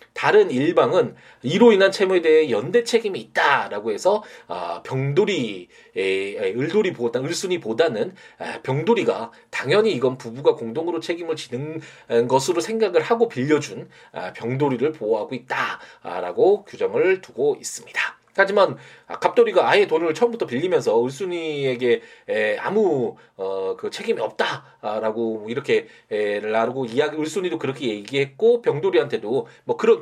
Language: Korean